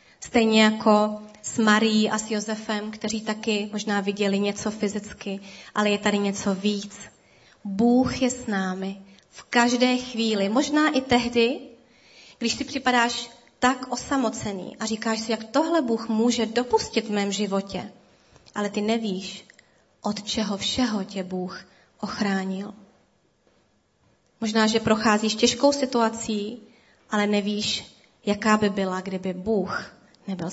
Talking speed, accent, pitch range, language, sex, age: 130 wpm, native, 205-240 Hz, Czech, female, 20-39